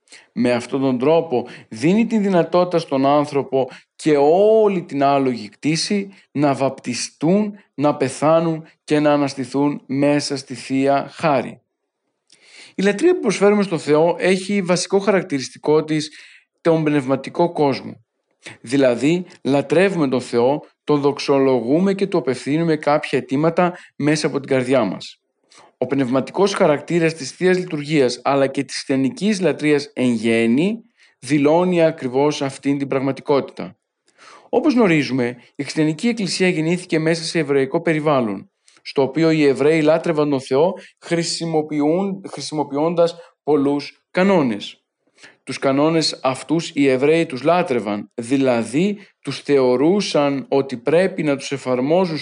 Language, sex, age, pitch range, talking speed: Greek, male, 50-69, 135-170 Hz, 125 wpm